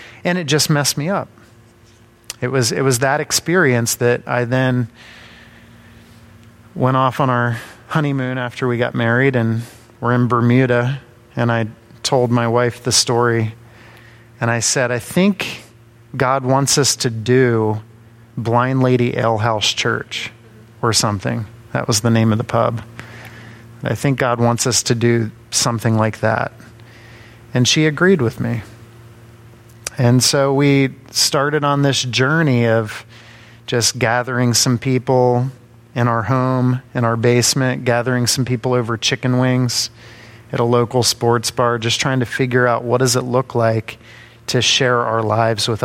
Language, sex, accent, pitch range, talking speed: English, male, American, 115-125 Hz, 155 wpm